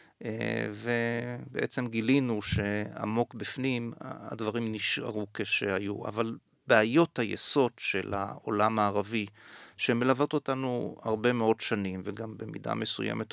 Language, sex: Hebrew, male